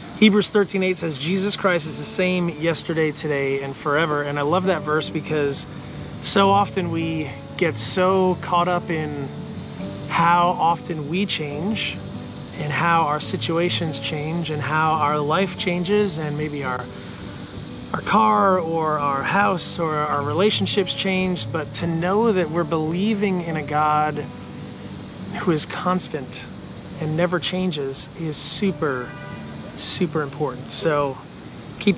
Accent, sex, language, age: American, male, English, 30-49